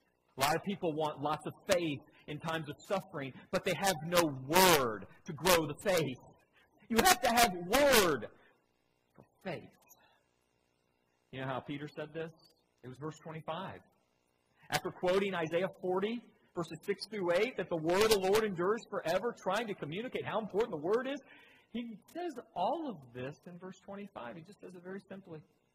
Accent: American